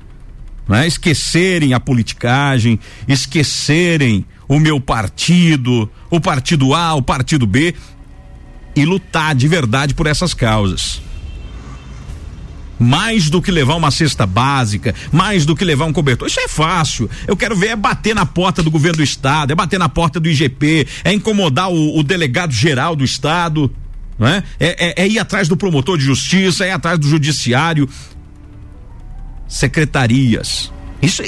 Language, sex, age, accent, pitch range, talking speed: Portuguese, male, 50-69, Brazilian, 110-165 Hz, 155 wpm